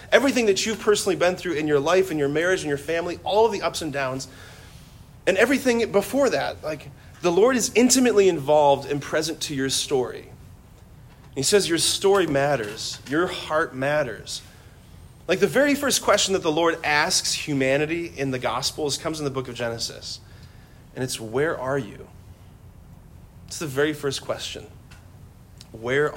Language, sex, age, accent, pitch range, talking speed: English, male, 30-49, American, 115-155 Hz, 170 wpm